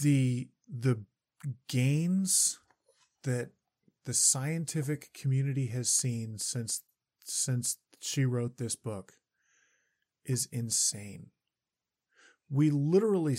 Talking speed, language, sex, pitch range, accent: 85 wpm, English, male, 120-145 Hz, American